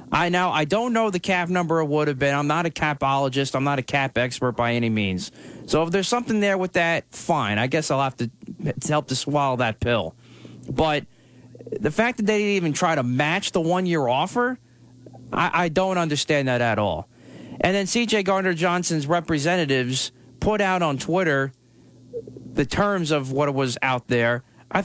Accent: American